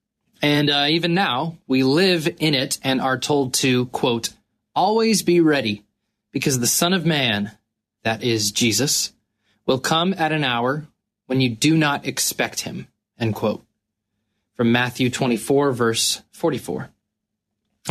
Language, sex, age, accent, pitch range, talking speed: English, male, 20-39, American, 115-160 Hz, 140 wpm